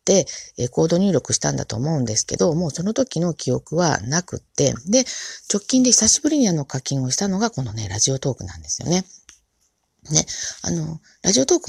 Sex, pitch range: female, 125-205 Hz